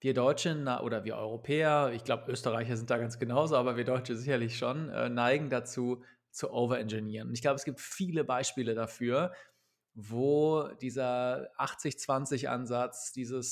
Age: 30-49